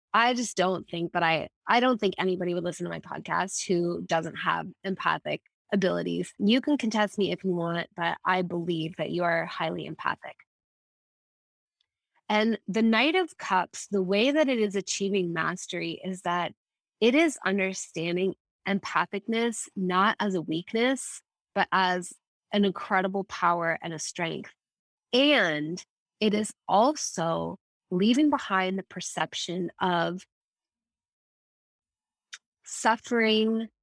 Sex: female